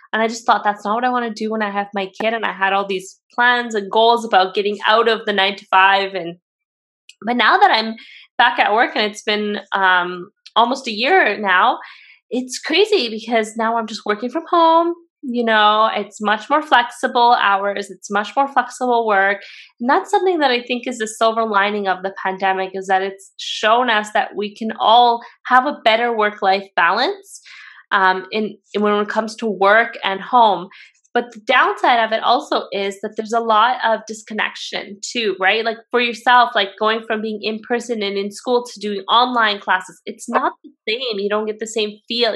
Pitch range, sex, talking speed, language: 205-245 Hz, female, 210 wpm, English